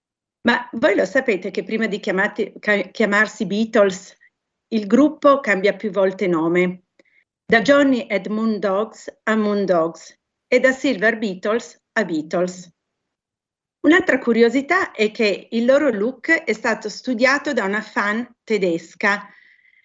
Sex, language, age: female, Italian, 40-59